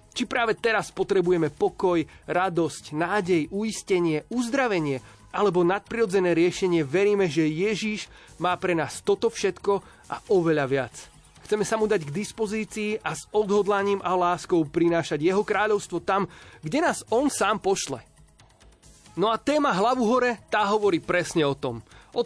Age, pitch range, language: 30-49, 155-205 Hz, Slovak